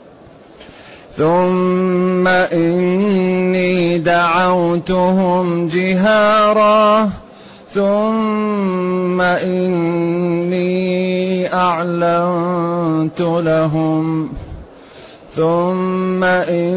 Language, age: Arabic, 30-49